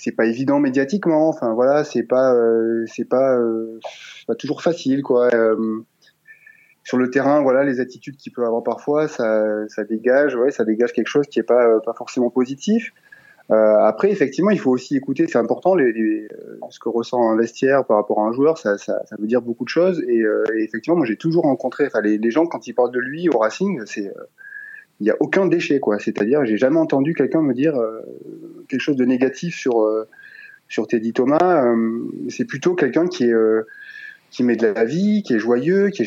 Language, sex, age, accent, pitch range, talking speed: French, male, 20-39, French, 115-175 Hz, 220 wpm